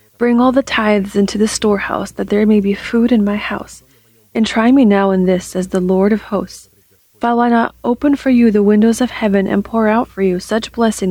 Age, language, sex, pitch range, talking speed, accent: 30-49, English, female, 190-220 Hz, 230 wpm, American